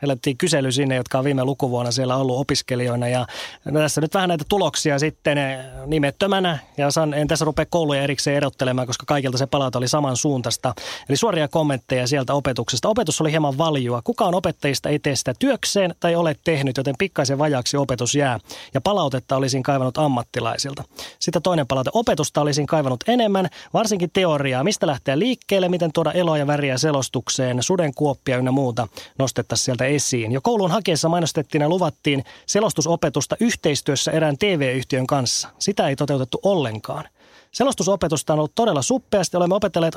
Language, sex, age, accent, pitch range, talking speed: Finnish, male, 30-49, native, 135-175 Hz, 160 wpm